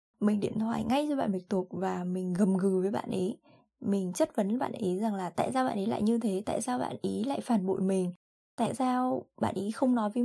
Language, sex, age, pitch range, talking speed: Vietnamese, female, 10-29, 195-230 Hz, 260 wpm